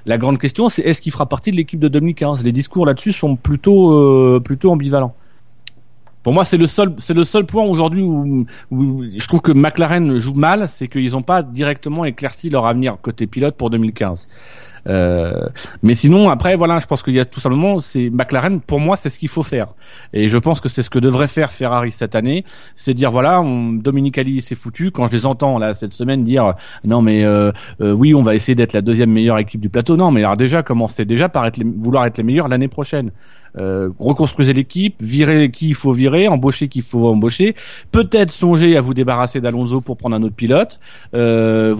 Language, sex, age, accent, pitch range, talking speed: French, male, 30-49, French, 120-160 Hz, 225 wpm